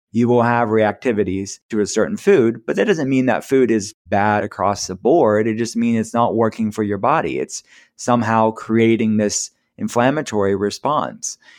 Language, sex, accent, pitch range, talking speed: English, male, American, 100-120 Hz, 175 wpm